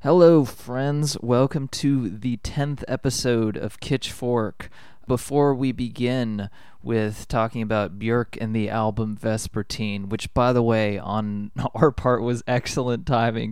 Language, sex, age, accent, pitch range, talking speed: English, male, 20-39, American, 105-135 Hz, 135 wpm